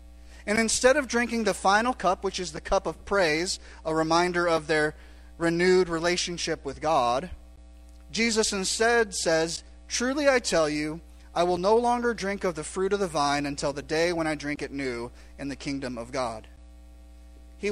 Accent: American